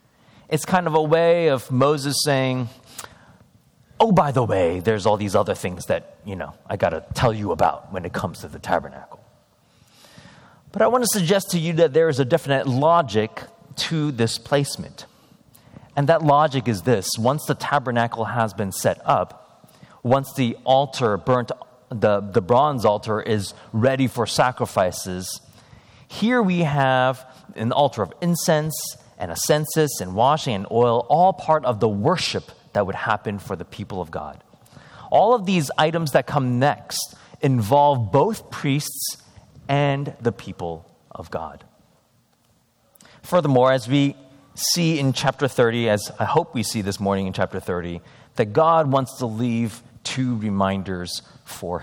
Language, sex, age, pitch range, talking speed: English, male, 30-49, 110-150 Hz, 160 wpm